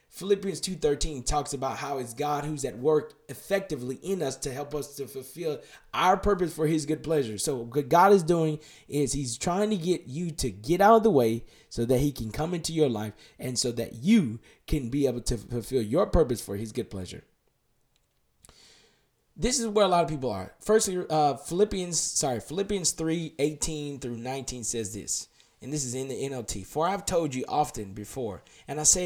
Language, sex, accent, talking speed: English, male, American, 200 wpm